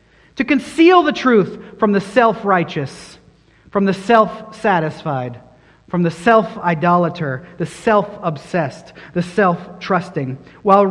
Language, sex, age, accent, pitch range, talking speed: English, male, 40-59, American, 160-230 Hz, 105 wpm